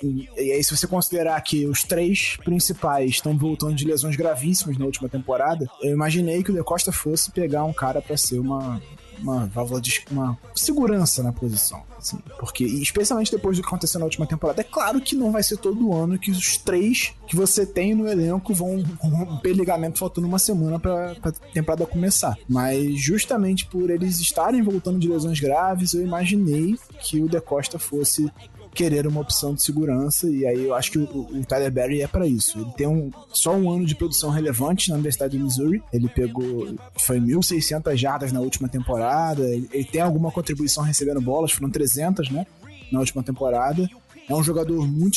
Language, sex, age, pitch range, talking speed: Portuguese, male, 20-39, 135-180 Hz, 190 wpm